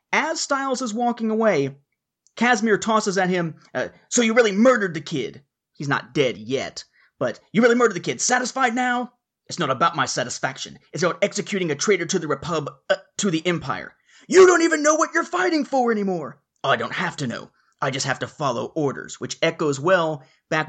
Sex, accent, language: male, American, English